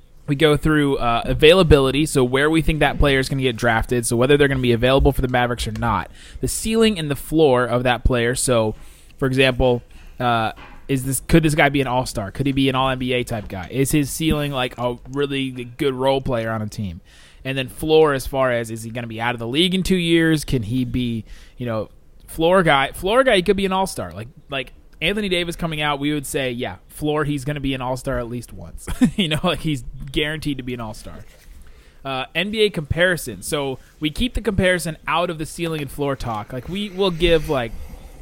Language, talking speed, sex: English, 235 wpm, male